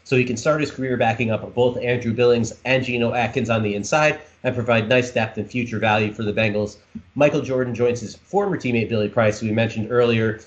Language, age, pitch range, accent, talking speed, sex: English, 30-49, 110-130 Hz, American, 225 wpm, male